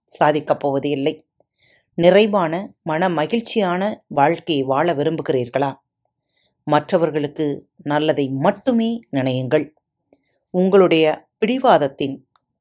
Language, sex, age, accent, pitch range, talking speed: Tamil, female, 30-49, native, 130-180 Hz, 55 wpm